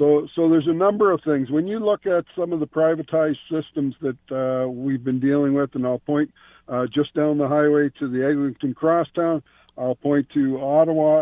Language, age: English, 50-69